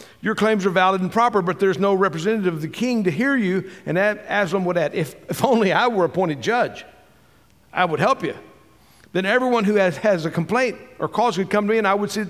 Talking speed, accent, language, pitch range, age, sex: 240 wpm, American, English, 185-220 Hz, 50-69, male